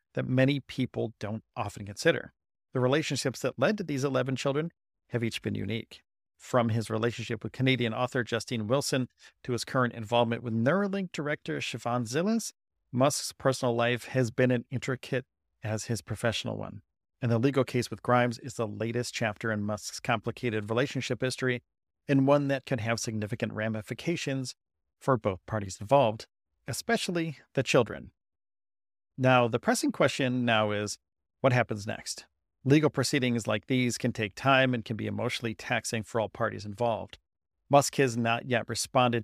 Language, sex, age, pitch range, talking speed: English, male, 40-59, 110-135 Hz, 160 wpm